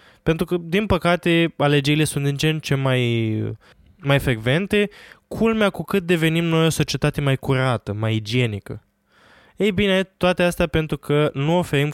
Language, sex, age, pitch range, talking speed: Romanian, male, 20-39, 125-155 Hz, 165 wpm